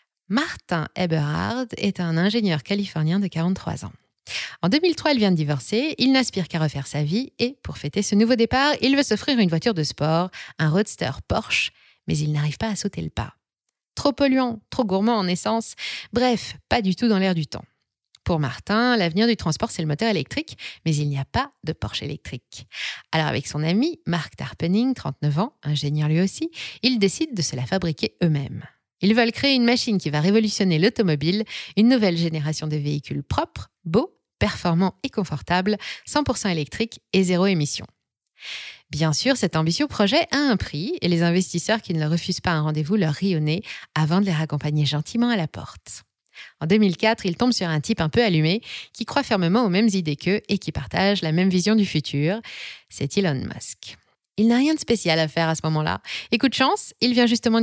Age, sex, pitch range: 20-39, female, 155-225 Hz